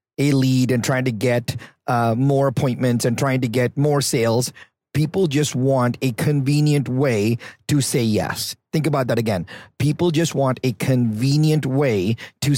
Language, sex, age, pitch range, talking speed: English, male, 40-59, 120-145 Hz, 165 wpm